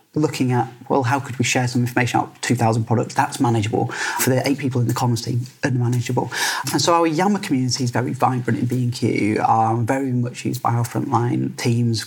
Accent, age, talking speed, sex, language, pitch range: British, 30-49, 210 wpm, male, English, 125-155 Hz